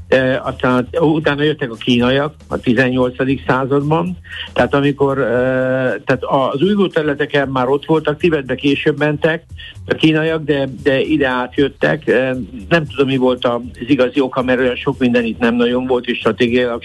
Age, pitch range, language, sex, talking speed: 60-79, 120-145 Hz, Hungarian, male, 165 wpm